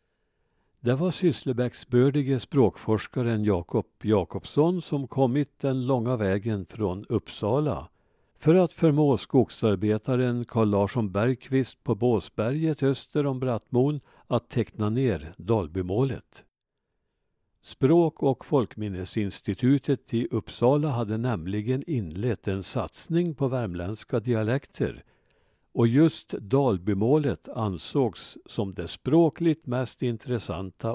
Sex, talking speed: male, 95 wpm